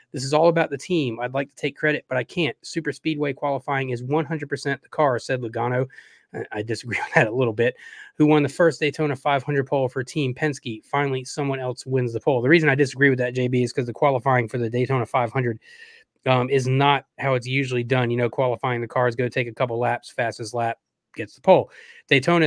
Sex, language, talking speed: male, English, 225 wpm